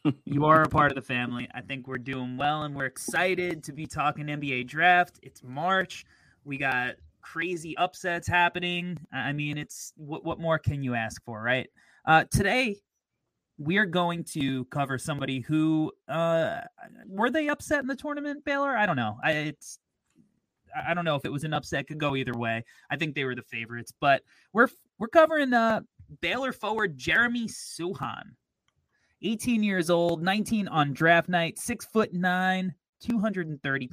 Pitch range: 130-175 Hz